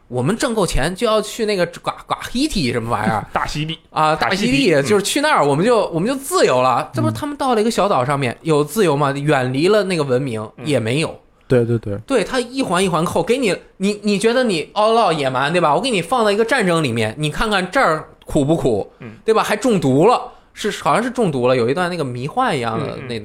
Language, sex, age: Chinese, male, 20-39